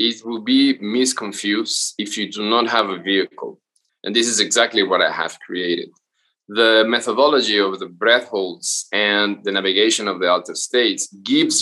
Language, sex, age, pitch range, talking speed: English, male, 20-39, 100-140 Hz, 170 wpm